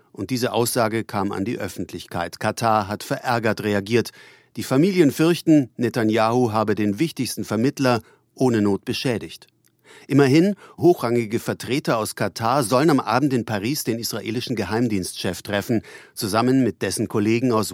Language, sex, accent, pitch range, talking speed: German, male, German, 105-130 Hz, 140 wpm